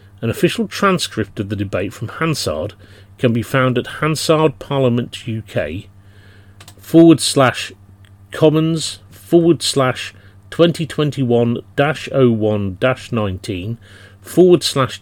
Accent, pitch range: British, 100-130 Hz